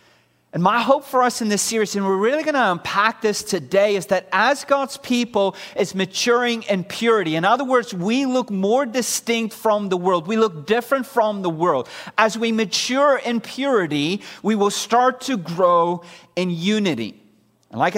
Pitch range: 195-245 Hz